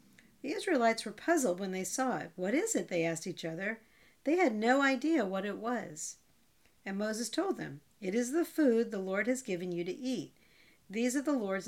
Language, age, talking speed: English, 50-69, 210 wpm